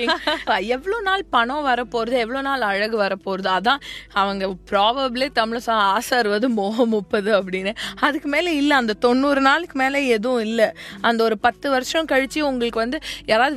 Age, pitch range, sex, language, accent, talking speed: 20-39, 210-280 Hz, female, Tamil, native, 150 wpm